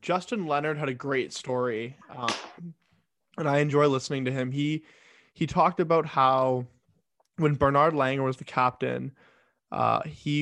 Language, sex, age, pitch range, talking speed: English, male, 20-39, 125-150 Hz, 150 wpm